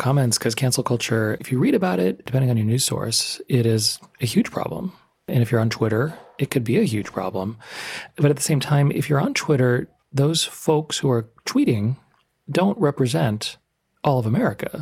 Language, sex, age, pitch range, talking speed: English, male, 40-59, 115-150 Hz, 200 wpm